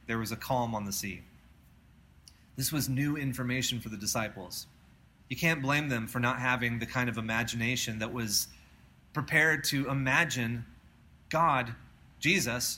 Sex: male